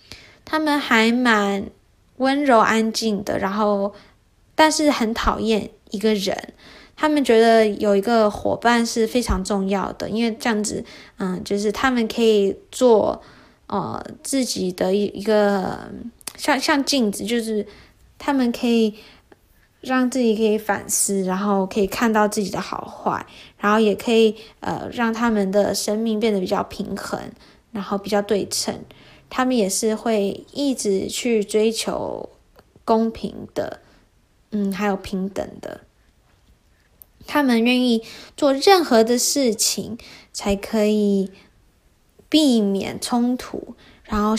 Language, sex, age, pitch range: Chinese, female, 10-29, 205-240 Hz